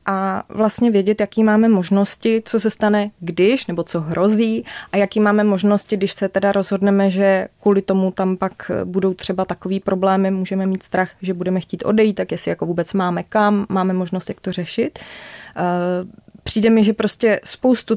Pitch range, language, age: 185-205 Hz, Czech, 20-39